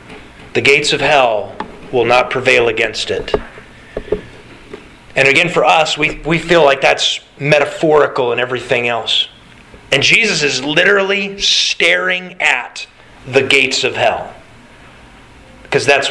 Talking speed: 125 wpm